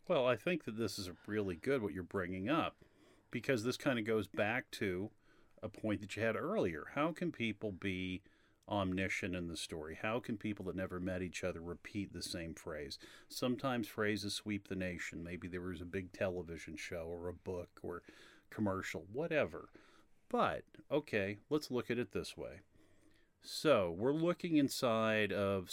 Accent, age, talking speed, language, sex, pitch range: American, 40-59, 175 wpm, English, male, 95-115 Hz